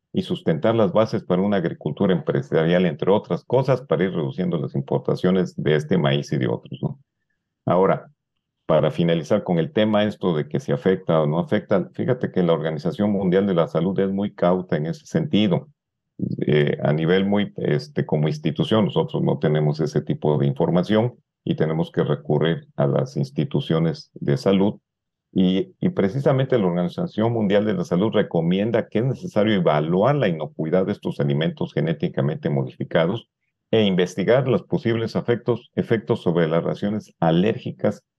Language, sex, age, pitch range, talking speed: Spanish, male, 50-69, 85-120 Hz, 165 wpm